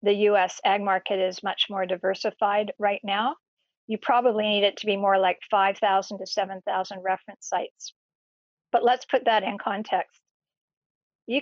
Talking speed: 160 wpm